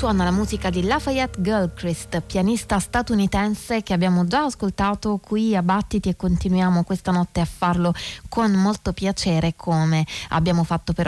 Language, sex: Italian, female